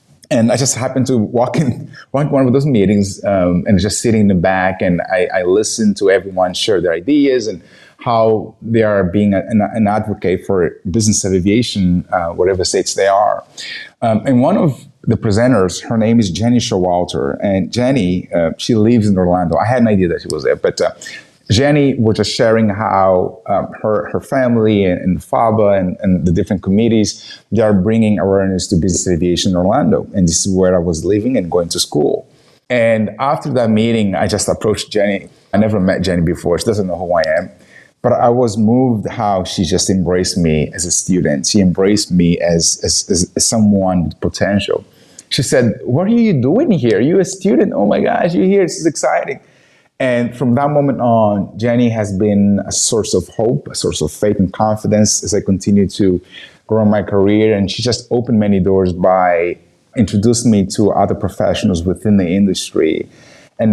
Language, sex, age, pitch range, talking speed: English, male, 30-49, 95-120 Hz, 195 wpm